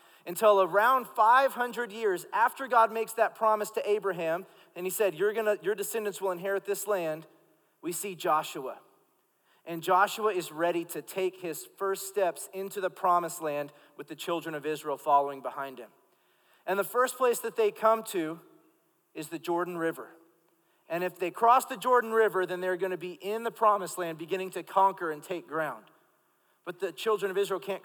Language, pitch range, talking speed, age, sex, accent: English, 170-210 Hz, 180 wpm, 40-59, male, American